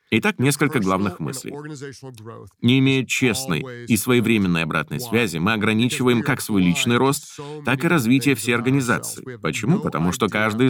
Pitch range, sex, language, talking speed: 105-135 Hz, male, Russian, 145 wpm